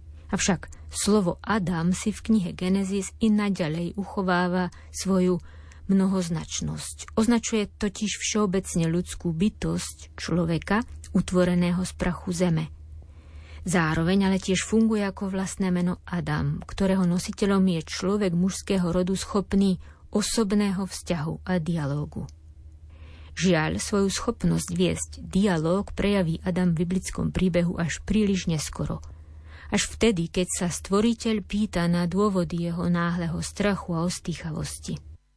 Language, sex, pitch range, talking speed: Slovak, female, 160-195 Hz, 115 wpm